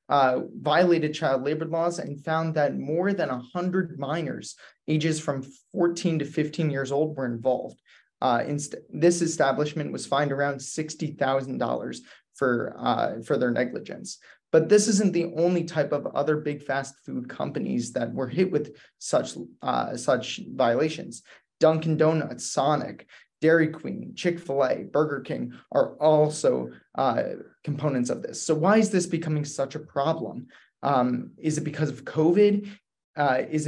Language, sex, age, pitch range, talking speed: English, male, 20-39, 140-165 Hz, 150 wpm